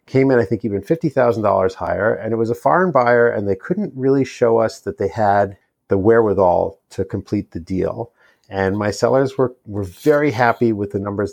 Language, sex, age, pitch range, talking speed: English, male, 40-59, 100-125 Hz, 200 wpm